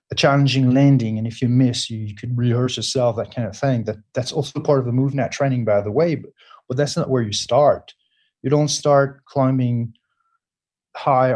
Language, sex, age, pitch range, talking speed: English, male, 30-49, 120-145 Hz, 195 wpm